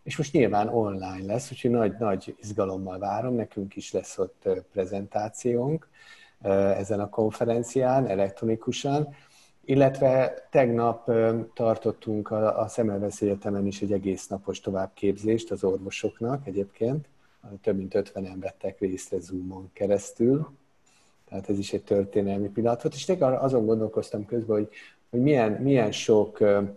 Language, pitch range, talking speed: Hungarian, 100-120 Hz, 125 wpm